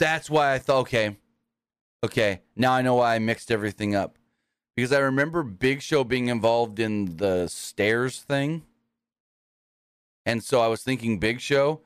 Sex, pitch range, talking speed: male, 105-130 Hz, 160 wpm